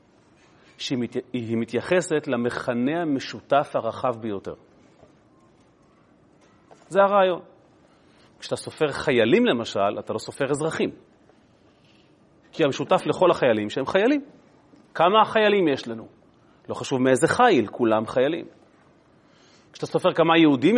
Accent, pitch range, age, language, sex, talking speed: native, 125-175 Hz, 30-49, Hebrew, male, 105 wpm